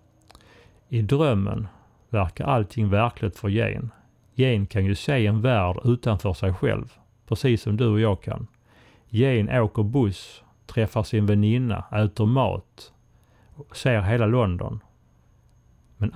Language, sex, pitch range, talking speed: Swedish, male, 105-120 Hz, 125 wpm